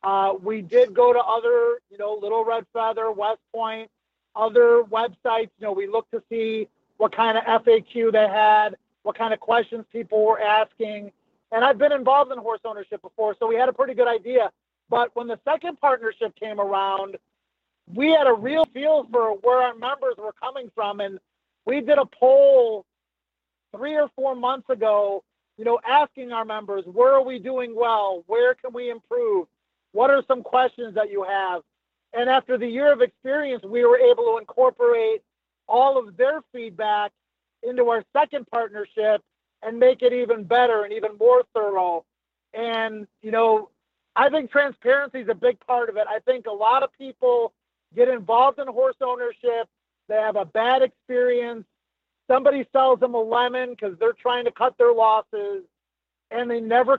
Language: English